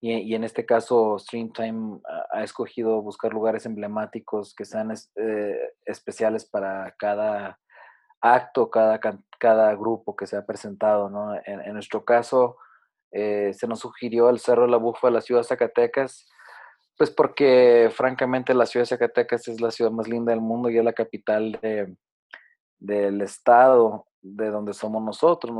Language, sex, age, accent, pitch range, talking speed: Spanish, male, 20-39, Mexican, 100-115 Hz, 170 wpm